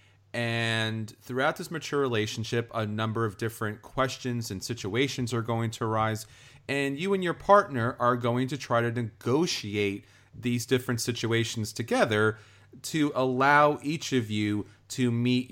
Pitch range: 110-135 Hz